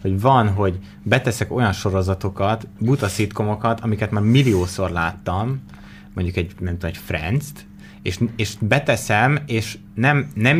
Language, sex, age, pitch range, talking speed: Hungarian, male, 30-49, 95-115 Hz, 135 wpm